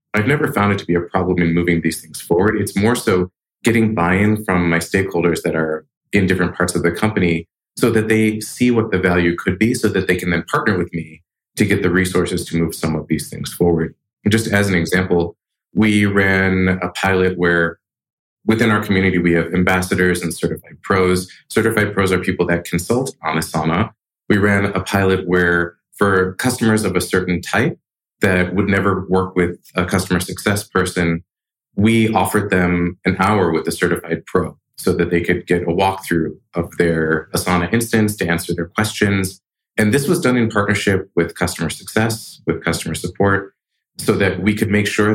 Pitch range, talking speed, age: 85-105 Hz, 195 wpm, 30-49